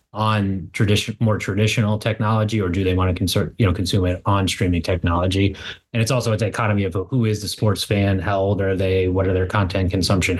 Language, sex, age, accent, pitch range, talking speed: English, male, 30-49, American, 95-115 Hz, 220 wpm